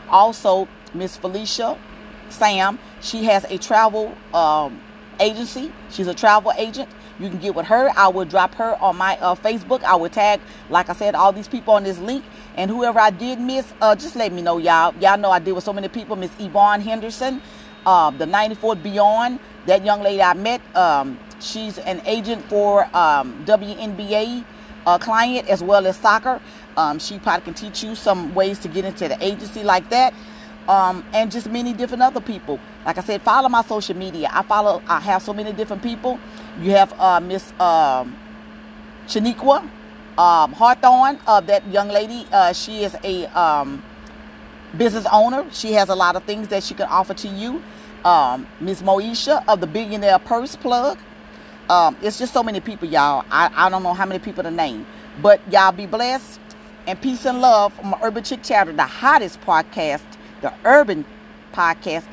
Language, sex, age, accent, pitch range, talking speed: English, female, 40-59, American, 185-225 Hz, 190 wpm